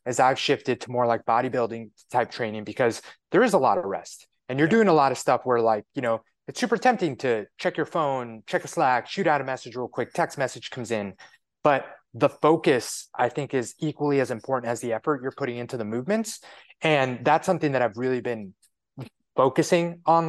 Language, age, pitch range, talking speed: English, 20-39, 120-150 Hz, 215 wpm